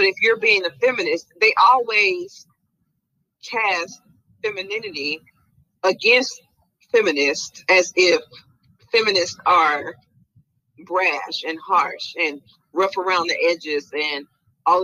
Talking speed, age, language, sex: 105 wpm, 40-59, English, female